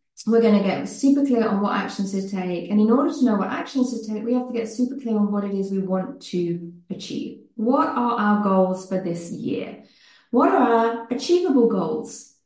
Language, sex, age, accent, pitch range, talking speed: English, female, 30-49, British, 185-245 Hz, 220 wpm